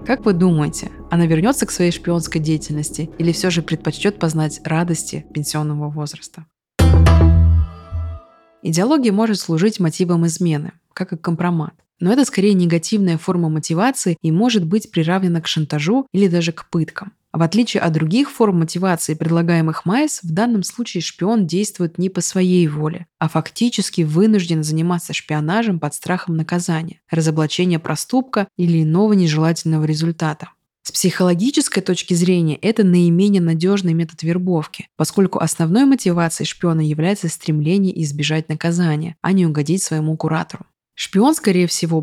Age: 20-39